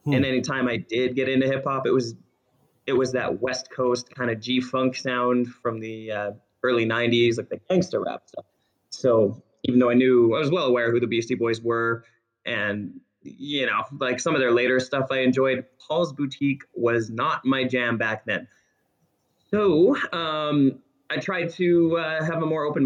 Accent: American